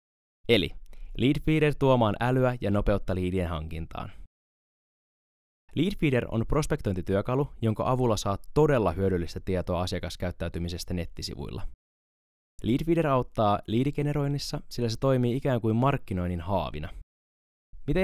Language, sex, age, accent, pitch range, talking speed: Finnish, male, 20-39, native, 90-135 Hz, 100 wpm